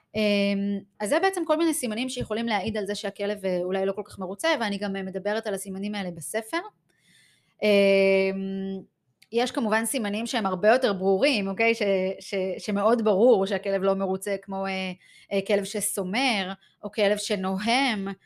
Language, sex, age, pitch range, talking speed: Hebrew, female, 20-39, 195-235 Hz, 150 wpm